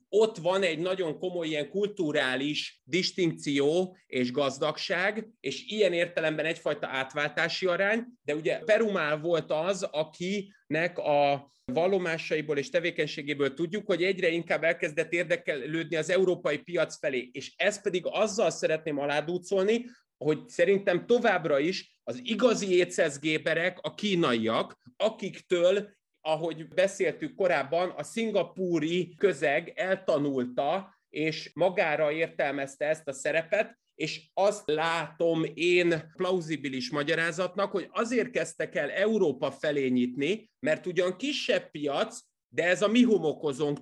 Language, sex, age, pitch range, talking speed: Hungarian, male, 30-49, 150-195 Hz, 120 wpm